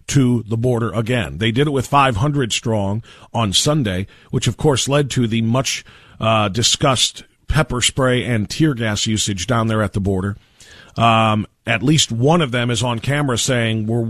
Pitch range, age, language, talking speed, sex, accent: 110-130 Hz, 40-59, English, 185 wpm, male, American